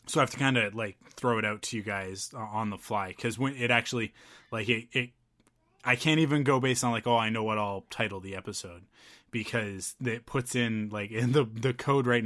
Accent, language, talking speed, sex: American, English, 240 wpm, male